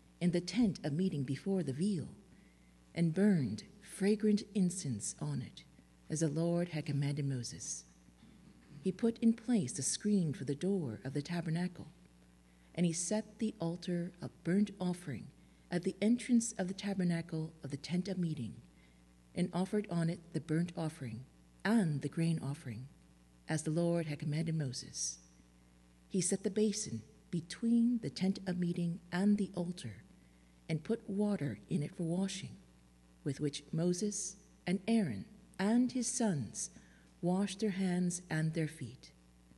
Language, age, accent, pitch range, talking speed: English, 50-69, American, 125-190 Hz, 155 wpm